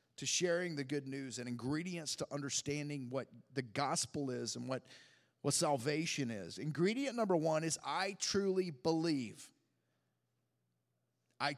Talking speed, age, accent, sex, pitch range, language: 135 wpm, 30-49, American, male, 130-175 Hz, English